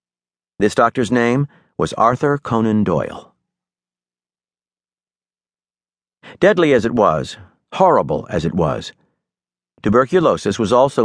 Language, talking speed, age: English, 100 wpm, 50-69